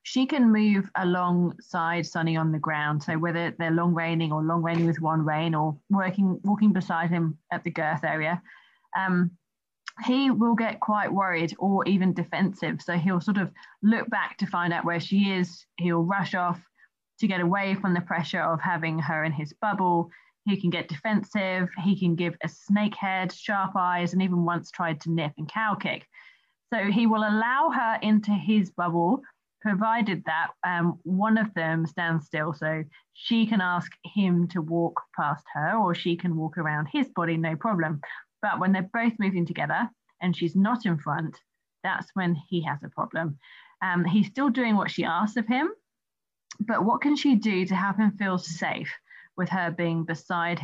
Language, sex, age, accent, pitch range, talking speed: English, female, 20-39, British, 165-200 Hz, 190 wpm